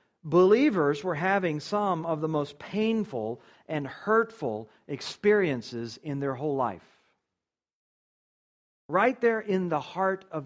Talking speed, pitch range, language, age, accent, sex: 120 wpm, 145-210 Hz, English, 50-69, American, male